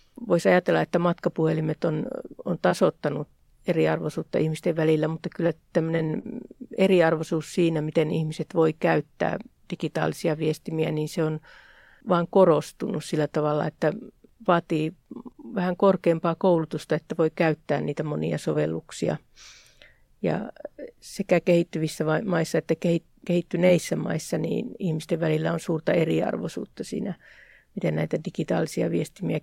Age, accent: 50-69, native